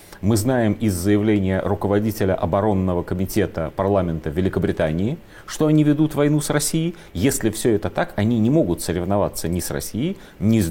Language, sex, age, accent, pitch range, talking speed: Russian, male, 30-49, native, 85-120 Hz, 165 wpm